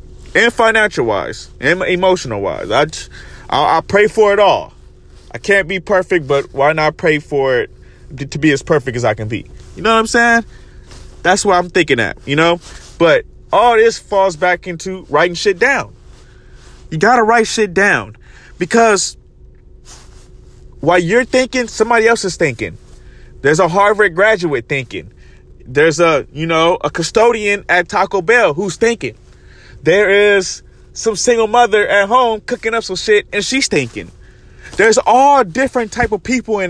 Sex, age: male, 20-39